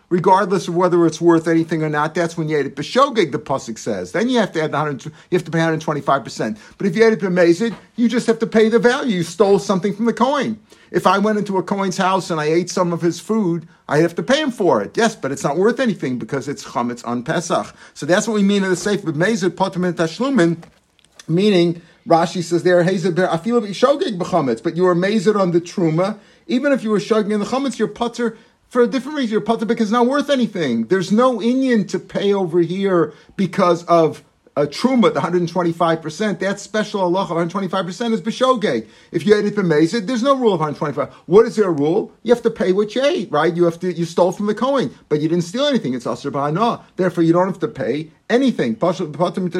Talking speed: 225 wpm